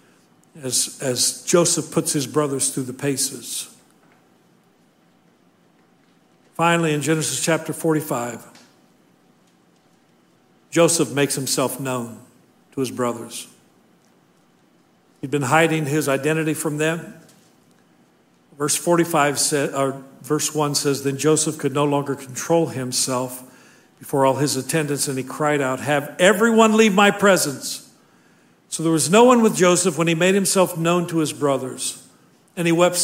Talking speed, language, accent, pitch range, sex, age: 135 wpm, English, American, 145-205 Hz, male, 50-69